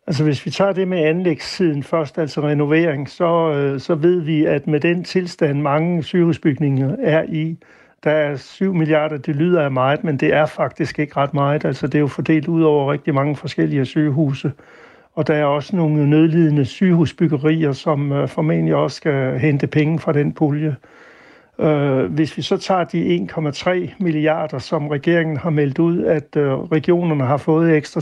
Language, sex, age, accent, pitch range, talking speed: Danish, male, 60-79, native, 145-165 Hz, 175 wpm